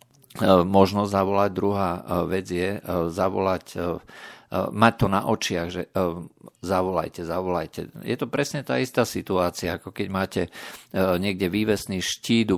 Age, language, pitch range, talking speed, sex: 50-69, Slovak, 90-100 Hz, 120 wpm, male